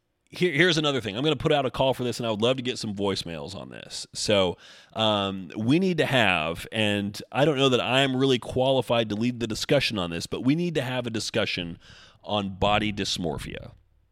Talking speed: 220 wpm